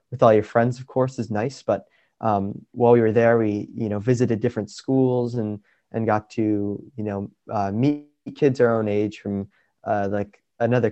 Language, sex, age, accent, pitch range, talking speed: English, male, 20-39, American, 105-120 Hz, 200 wpm